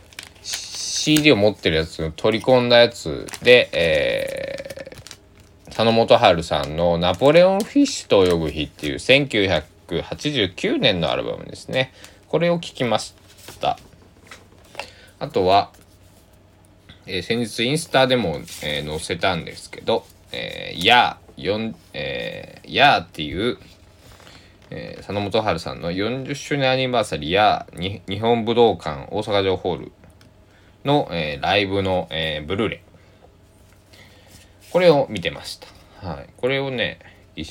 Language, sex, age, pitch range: Japanese, male, 20-39, 95-125 Hz